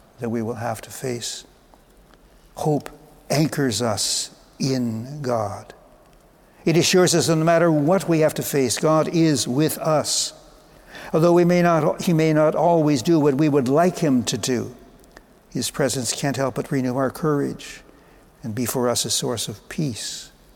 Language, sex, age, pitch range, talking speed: English, male, 60-79, 130-160 Hz, 170 wpm